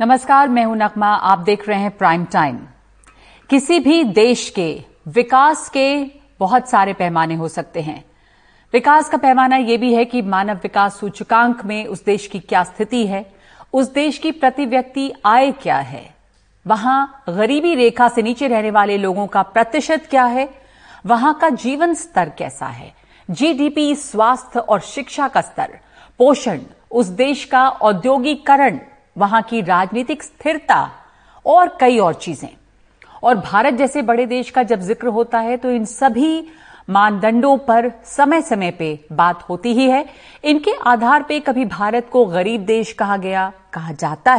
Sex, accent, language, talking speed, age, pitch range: female, native, Hindi, 160 wpm, 50-69, 200-270 Hz